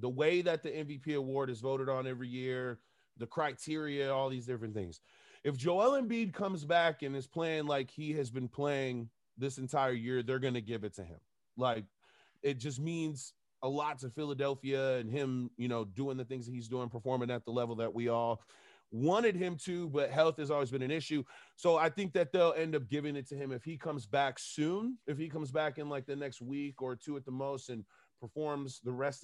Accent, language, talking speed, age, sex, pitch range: American, English, 225 wpm, 30-49, male, 125-155 Hz